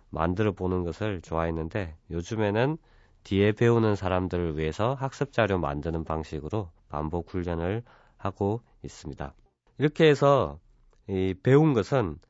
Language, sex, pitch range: Korean, male, 85-120 Hz